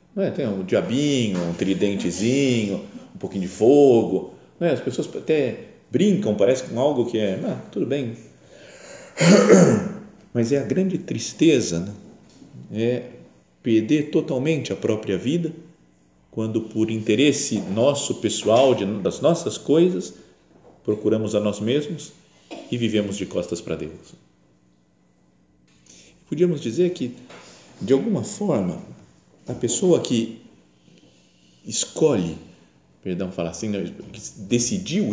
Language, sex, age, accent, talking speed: Portuguese, male, 50-69, Brazilian, 110 wpm